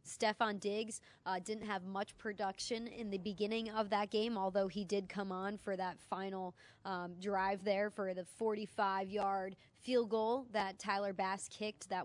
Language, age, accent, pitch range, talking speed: English, 20-39, American, 190-215 Hz, 170 wpm